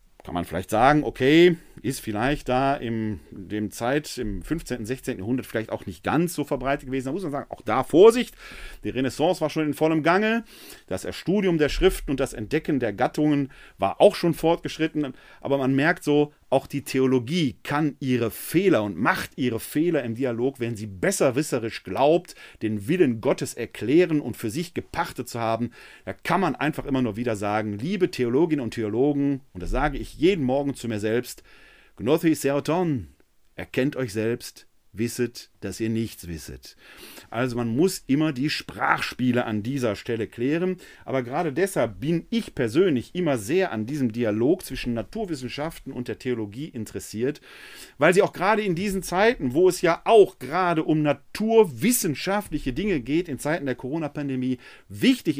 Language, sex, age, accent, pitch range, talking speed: German, male, 40-59, German, 120-160 Hz, 170 wpm